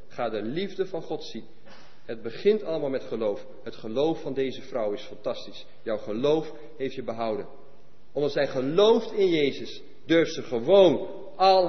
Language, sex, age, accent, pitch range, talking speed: English, male, 40-59, Dutch, 135-205 Hz, 165 wpm